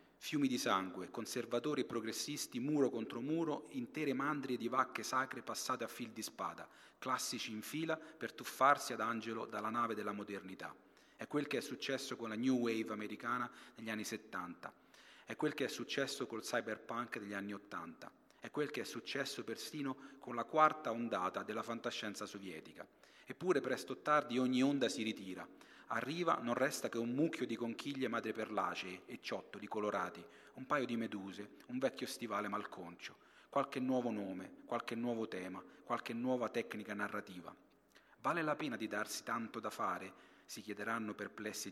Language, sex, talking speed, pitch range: Italian, male, 165 wpm, 105-125 Hz